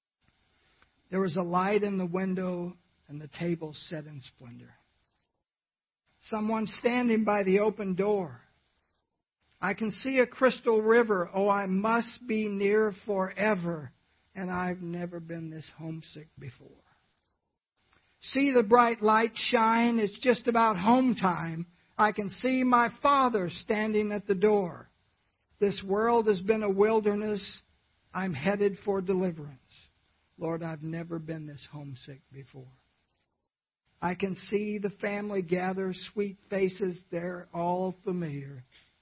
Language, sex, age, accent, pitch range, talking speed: English, male, 60-79, American, 155-205 Hz, 130 wpm